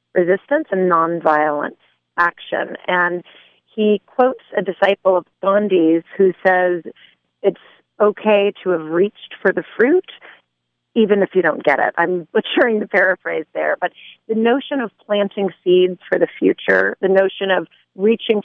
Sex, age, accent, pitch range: female, 40-59, American, 175-200 Hz